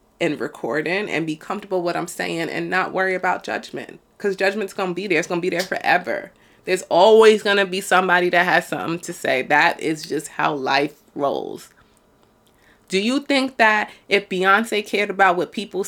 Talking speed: 200 wpm